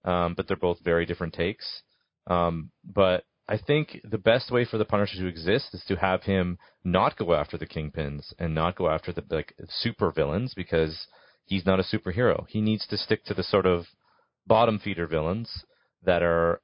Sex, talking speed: male, 195 wpm